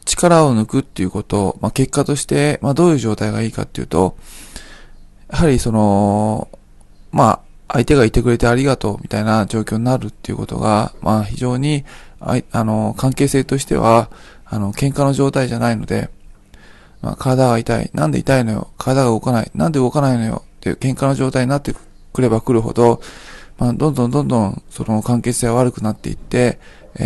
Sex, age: male, 20-39